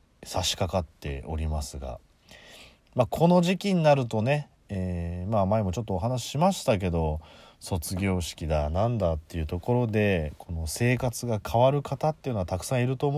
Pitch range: 80-125 Hz